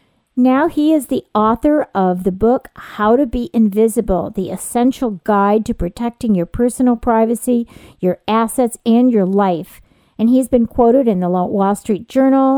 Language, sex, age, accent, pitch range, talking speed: English, female, 50-69, American, 210-255 Hz, 160 wpm